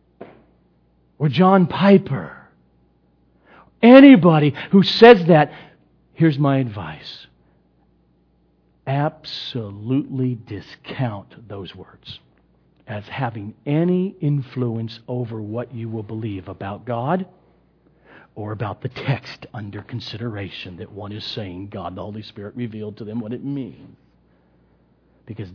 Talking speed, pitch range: 110 wpm, 95-155 Hz